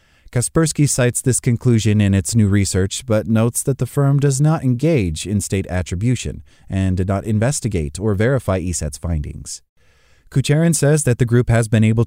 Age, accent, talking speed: 30-49, American, 175 wpm